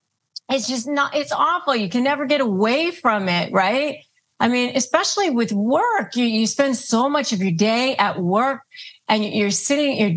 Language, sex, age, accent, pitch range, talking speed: English, female, 40-59, American, 205-270 Hz, 195 wpm